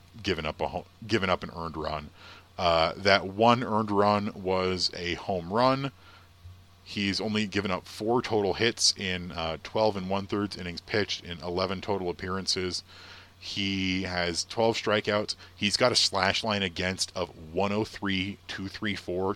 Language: English